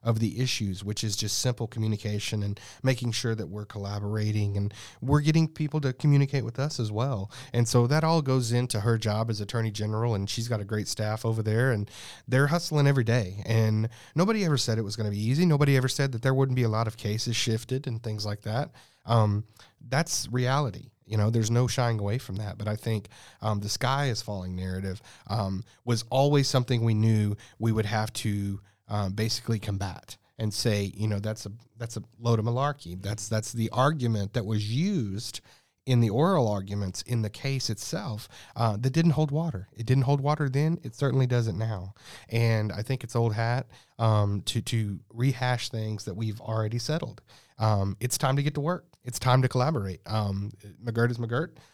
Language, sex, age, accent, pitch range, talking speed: English, male, 30-49, American, 105-130 Hz, 205 wpm